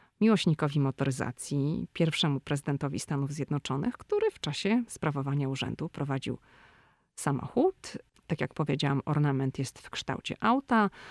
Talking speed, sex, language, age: 115 wpm, female, Polish, 40-59